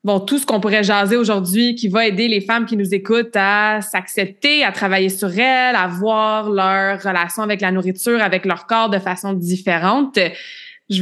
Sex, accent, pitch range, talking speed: female, Canadian, 195-245 Hz, 190 wpm